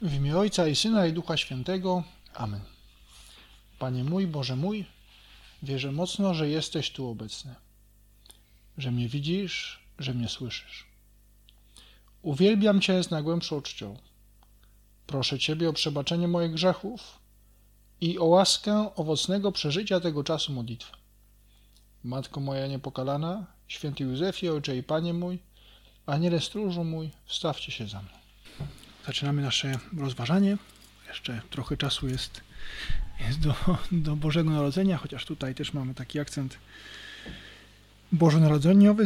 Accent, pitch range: native, 110-175 Hz